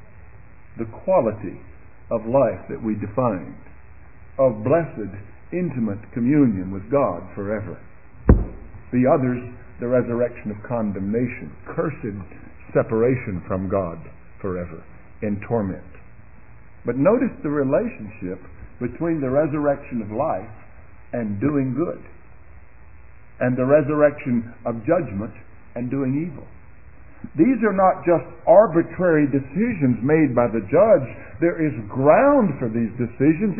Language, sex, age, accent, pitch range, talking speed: English, male, 60-79, American, 105-165 Hz, 115 wpm